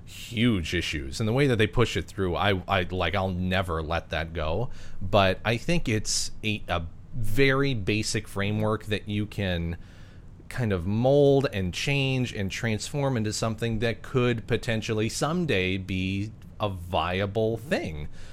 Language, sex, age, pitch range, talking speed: English, male, 30-49, 90-110 Hz, 155 wpm